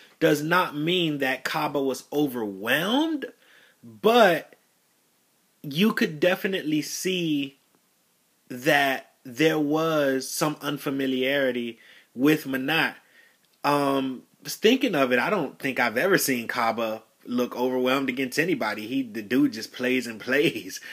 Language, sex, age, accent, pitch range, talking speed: English, male, 30-49, American, 125-155 Hz, 120 wpm